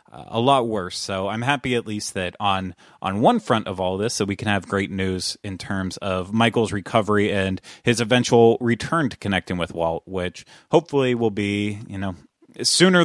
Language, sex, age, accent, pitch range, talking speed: English, male, 30-49, American, 95-120 Hz, 200 wpm